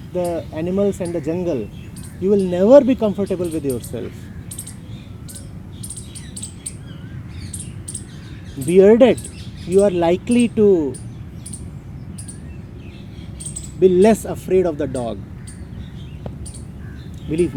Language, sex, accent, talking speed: English, male, Indian, 80 wpm